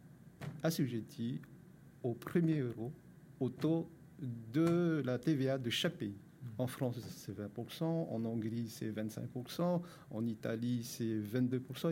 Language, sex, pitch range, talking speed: French, male, 120-155 Hz, 115 wpm